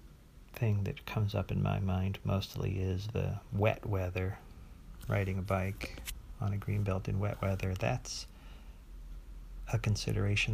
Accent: American